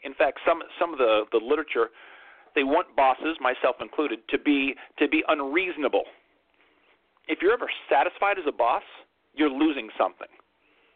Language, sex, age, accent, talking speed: English, male, 40-59, American, 155 wpm